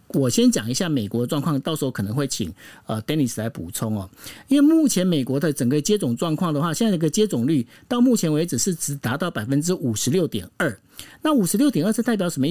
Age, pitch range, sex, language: 50-69, 135-205 Hz, male, Chinese